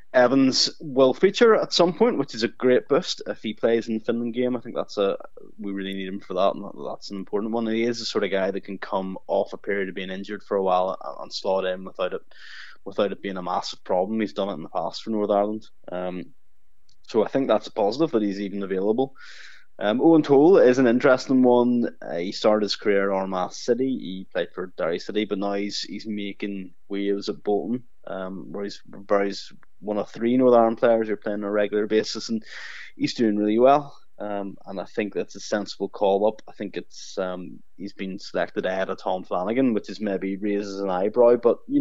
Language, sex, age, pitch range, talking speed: English, male, 20-39, 100-115 Hz, 230 wpm